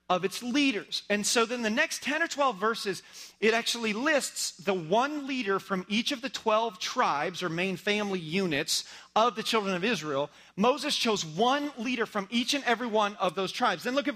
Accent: American